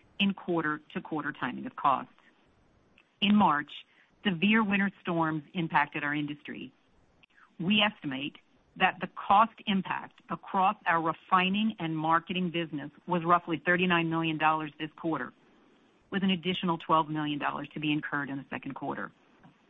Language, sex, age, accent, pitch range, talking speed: English, female, 50-69, American, 155-190 Hz, 135 wpm